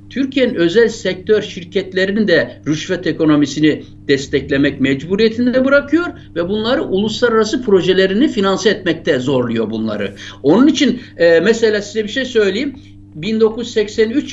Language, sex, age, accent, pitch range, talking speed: Turkish, male, 60-79, native, 155-215 Hz, 110 wpm